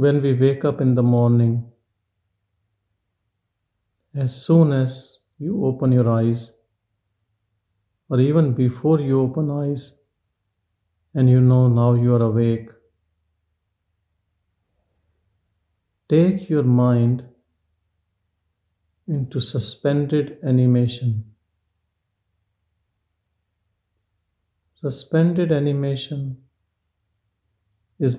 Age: 50-69